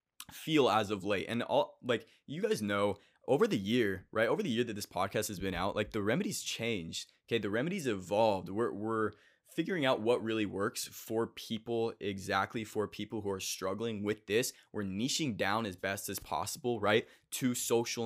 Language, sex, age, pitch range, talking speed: English, male, 20-39, 100-115 Hz, 195 wpm